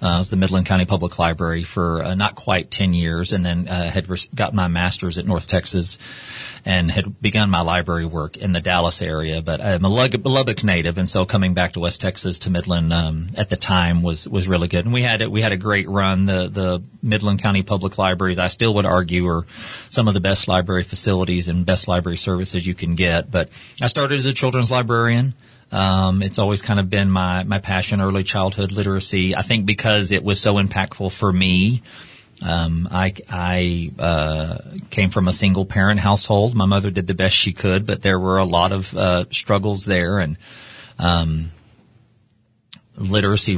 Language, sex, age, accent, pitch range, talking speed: English, male, 40-59, American, 90-105 Hz, 205 wpm